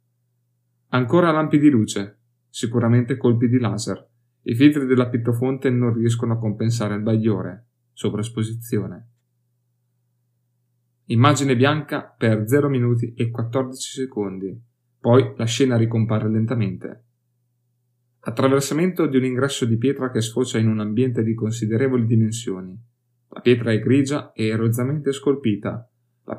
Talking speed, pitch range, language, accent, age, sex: 125 wpm, 115-130 Hz, Italian, native, 30-49, male